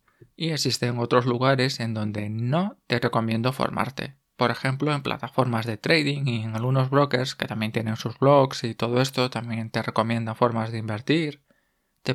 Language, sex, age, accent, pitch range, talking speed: Spanish, male, 20-39, Spanish, 115-135 Hz, 175 wpm